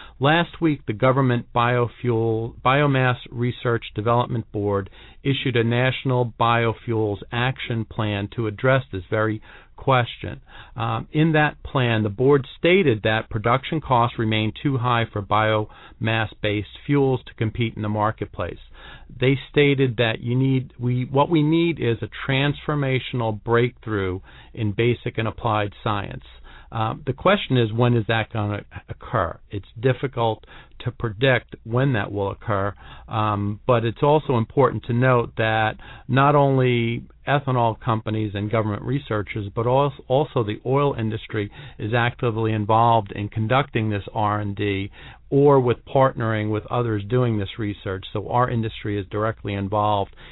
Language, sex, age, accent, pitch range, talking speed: English, male, 40-59, American, 105-130 Hz, 140 wpm